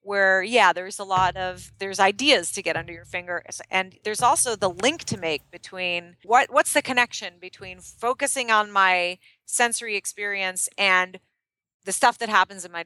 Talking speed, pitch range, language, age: 175 wpm, 175-225 Hz, English, 30-49